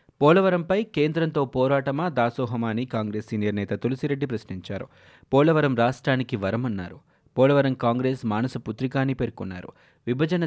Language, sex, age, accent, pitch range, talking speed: Telugu, male, 20-39, native, 110-140 Hz, 120 wpm